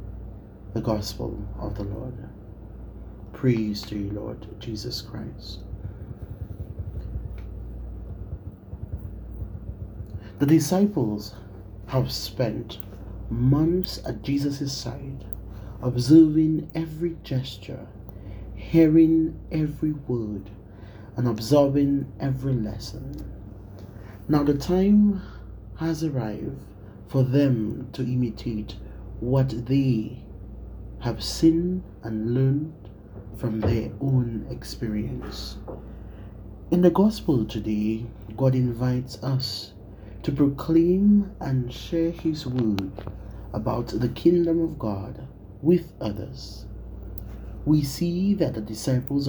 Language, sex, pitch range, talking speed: English, male, 100-140 Hz, 90 wpm